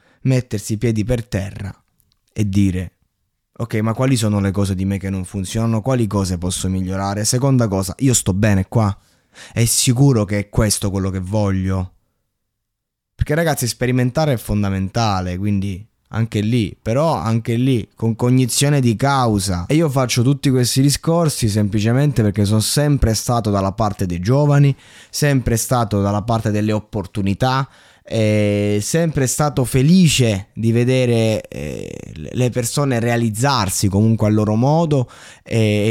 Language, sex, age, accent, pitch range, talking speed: Italian, male, 20-39, native, 105-125 Hz, 145 wpm